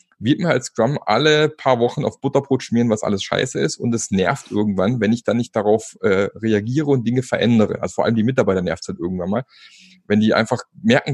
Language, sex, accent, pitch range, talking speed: German, male, German, 110-155 Hz, 230 wpm